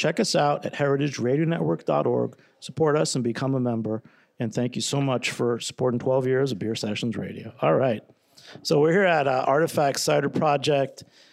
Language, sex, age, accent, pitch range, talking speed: English, male, 50-69, American, 130-165 Hz, 180 wpm